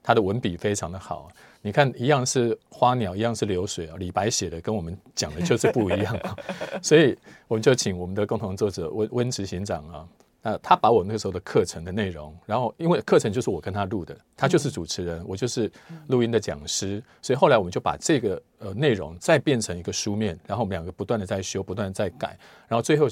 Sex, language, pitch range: male, Chinese, 95-125 Hz